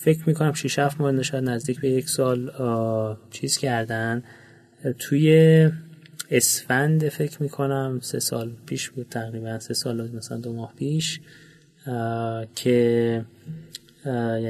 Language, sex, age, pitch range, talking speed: Persian, male, 30-49, 115-140 Hz, 130 wpm